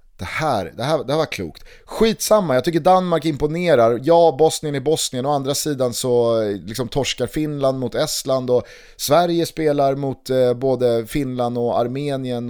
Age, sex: 30-49, male